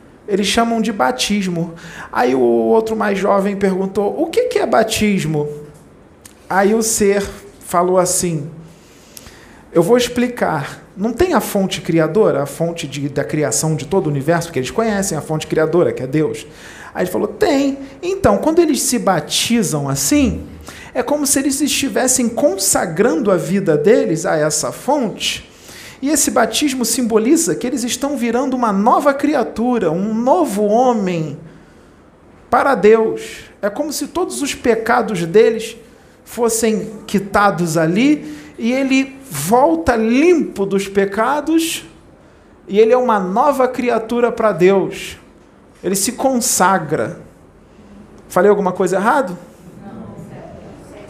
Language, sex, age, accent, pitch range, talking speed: Portuguese, male, 40-59, Brazilian, 165-250 Hz, 135 wpm